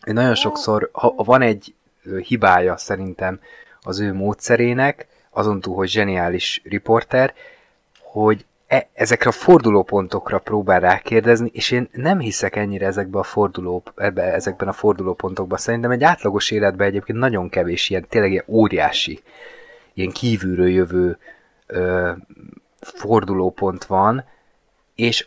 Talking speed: 105 wpm